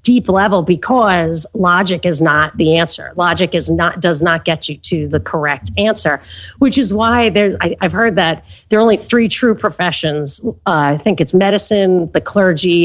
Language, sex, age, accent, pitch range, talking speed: English, female, 40-59, American, 155-205 Hz, 185 wpm